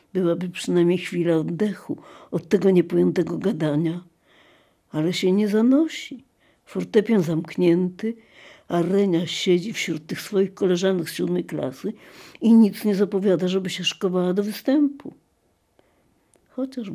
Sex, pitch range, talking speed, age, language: female, 165-205 Hz, 120 wpm, 60-79, Polish